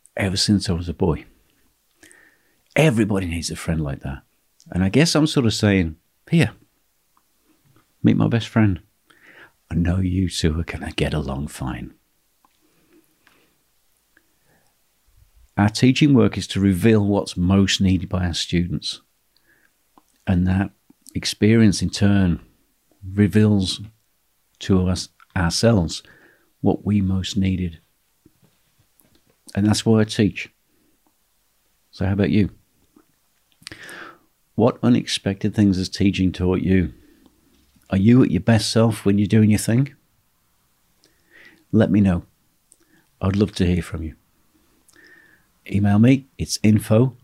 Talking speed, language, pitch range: 125 wpm, English, 85-105 Hz